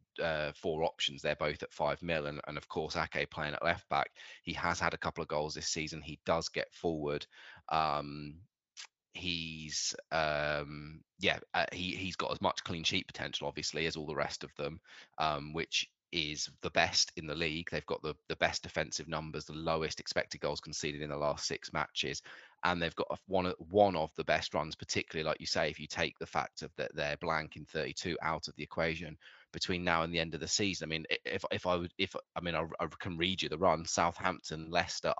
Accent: British